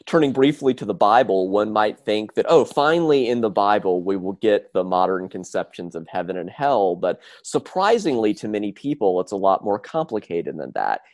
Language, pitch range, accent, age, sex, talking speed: English, 95-130 Hz, American, 30-49, male, 195 wpm